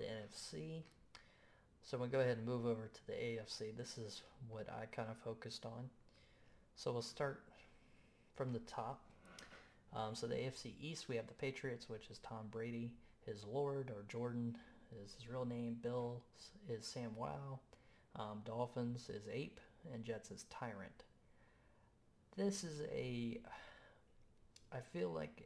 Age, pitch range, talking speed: 30-49, 110-125 Hz, 150 wpm